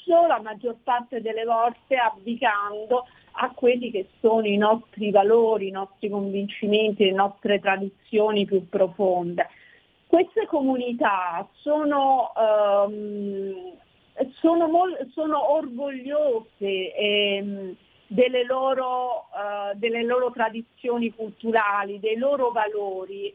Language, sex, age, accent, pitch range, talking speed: Italian, female, 40-59, native, 210-275 Hz, 90 wpm